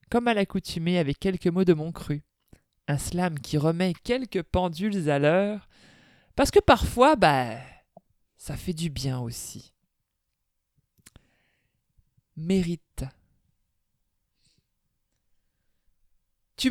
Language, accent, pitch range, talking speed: French, French, 180-235 Hz, 100 wpm